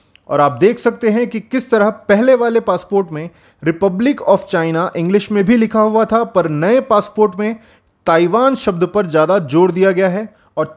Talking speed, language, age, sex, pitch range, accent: 190 wpm, Hindi, 30-49, male, 160-225 Hz, native